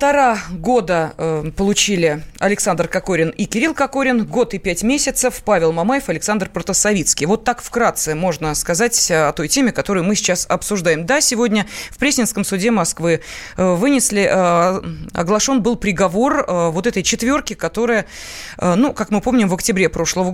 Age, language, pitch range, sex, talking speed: 20-39, Russian, 170-230 Hz, female, 145 wpm